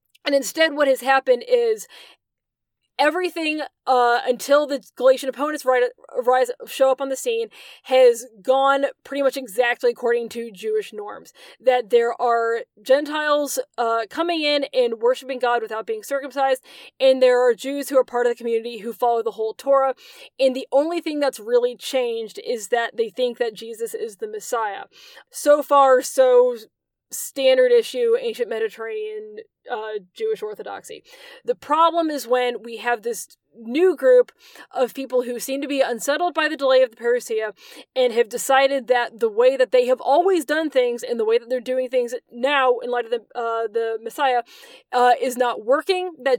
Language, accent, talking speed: English, American, 170 wpm